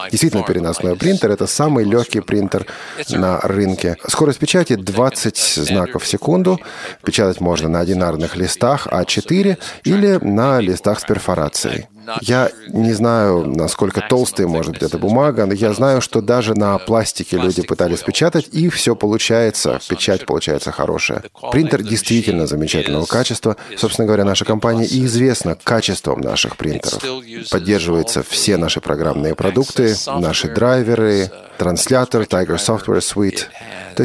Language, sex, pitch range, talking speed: Russian, male, 95-130 Hz, 130 wpm